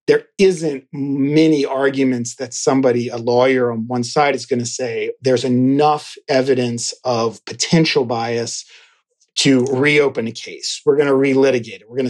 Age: 40-59